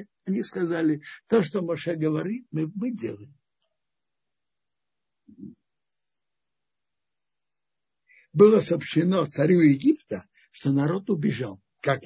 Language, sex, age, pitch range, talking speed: Russian, male, 60-79, 145-200 Hz, 85 wpm